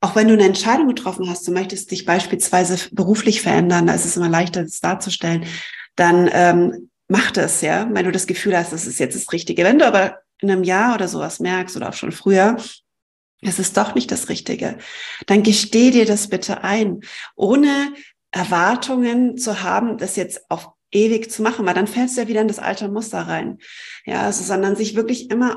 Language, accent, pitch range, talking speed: German, German, 185-225 Hz, 205 wpm